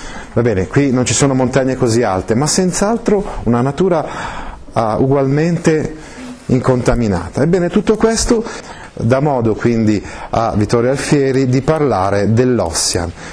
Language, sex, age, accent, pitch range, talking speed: Italian, male, 40-59, native, 110-150 Hz, 125 wpm